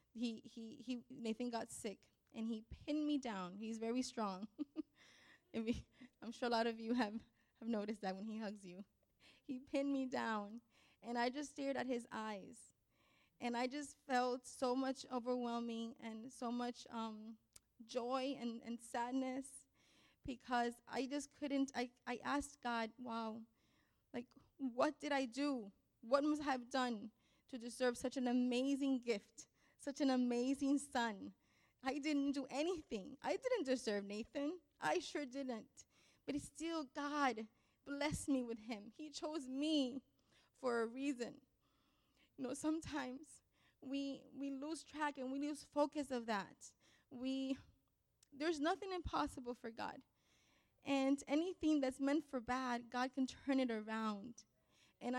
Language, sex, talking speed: English, female, 150 wpm